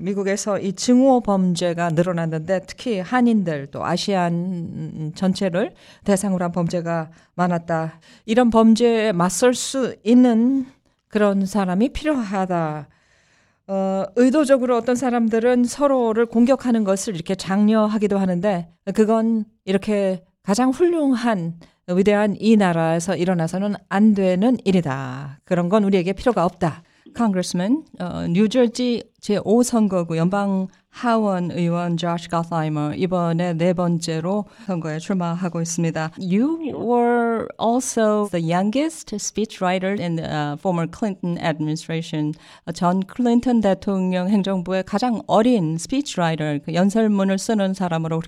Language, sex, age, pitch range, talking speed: English, female, 40-59, 170-225 Hz, 115 wpm